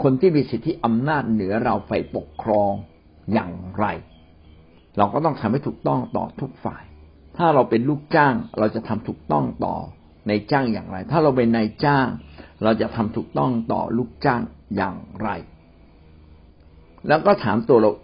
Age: 60-79